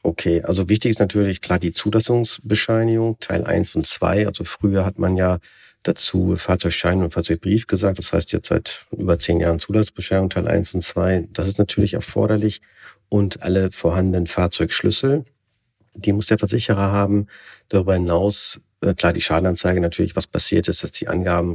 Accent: German